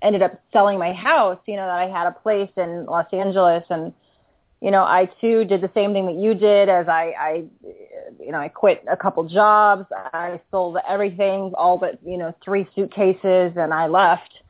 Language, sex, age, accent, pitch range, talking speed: English, female, 30-49, American, 195-240 Hz, 205 wpm